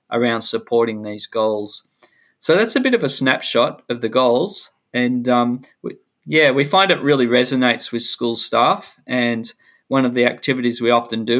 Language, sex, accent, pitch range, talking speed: English, male, Australian, 115-135 Hz, 175 wpm